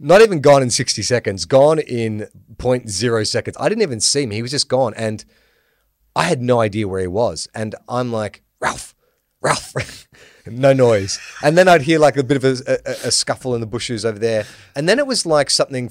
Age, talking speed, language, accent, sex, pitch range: 30-49, 220 wpm, English, Australian, male, 110-140 Hz